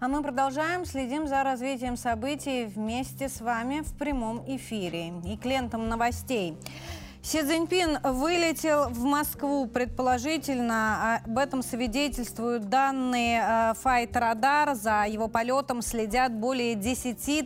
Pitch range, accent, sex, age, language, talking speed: 210-275 Hz, native, female, 30-49, Russian, 115 wpm